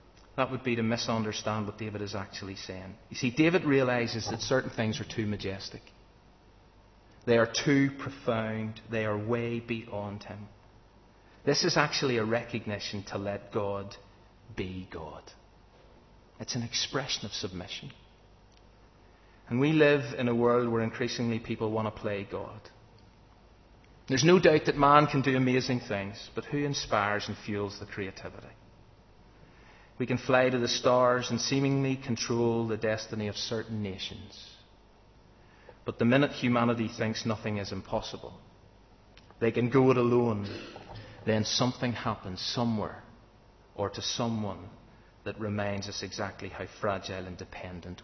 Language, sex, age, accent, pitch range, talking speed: English, male, 30-49, British, 100-120 Hz, 145 wpm